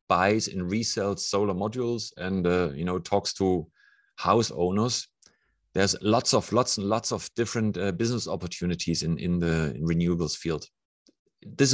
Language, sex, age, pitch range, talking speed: English, male, 30-49, 95-115 Hz, 155 wpm